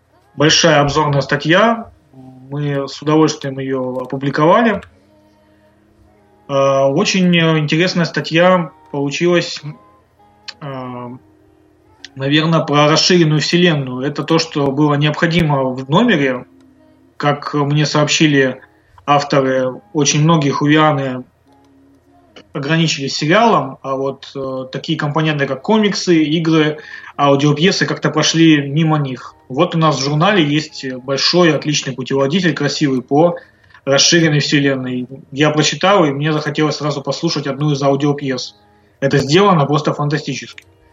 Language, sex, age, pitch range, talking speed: Russian, male, 20-39, 135-155 Hz, 105 wpm